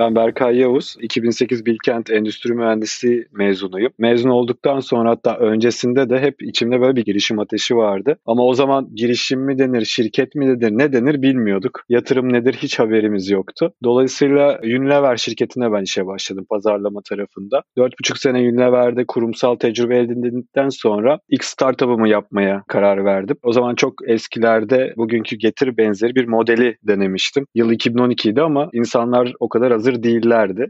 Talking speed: 150 wpm